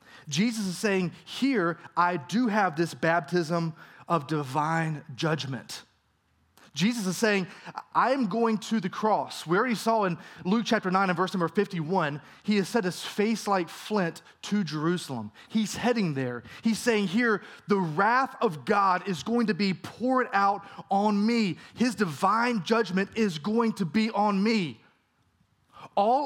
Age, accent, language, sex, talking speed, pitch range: 20-39, American, English, male, 160 wpm, 180-240 Hz